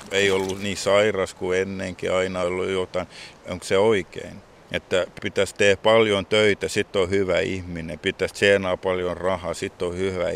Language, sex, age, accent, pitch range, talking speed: Finnish, male, 50-69, native, 90-110 Hz, 160 wpm